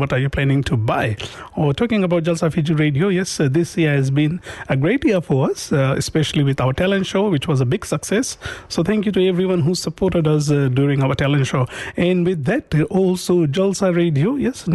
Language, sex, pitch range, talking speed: Hindi, male, 140-170 Hz, 235 wpm